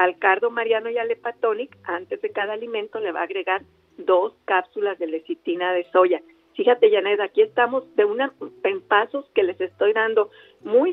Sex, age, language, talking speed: female, 50-69, Spanish, 180 wpm